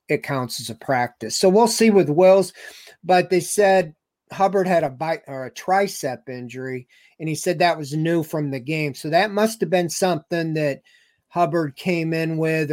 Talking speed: 190 wpm